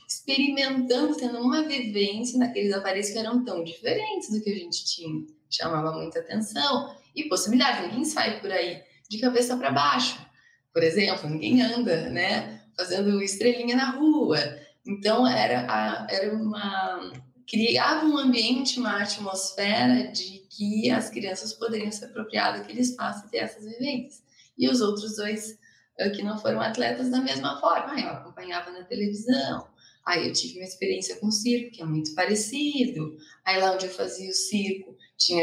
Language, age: Portuguese, 10-29